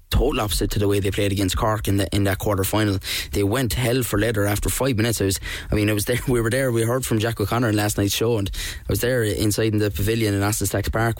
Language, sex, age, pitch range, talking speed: English, male, 10-29, 95-110 Hz, 290 wpm